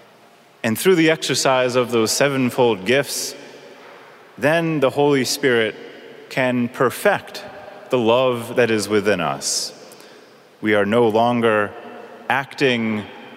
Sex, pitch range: male, 120-150 Hz